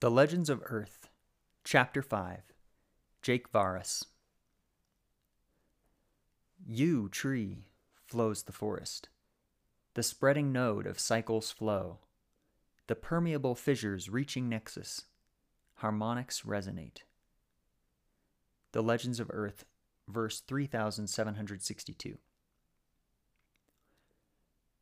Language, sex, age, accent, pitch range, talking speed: English, male, 30-49, American, 105-125 Hz, 75 wpm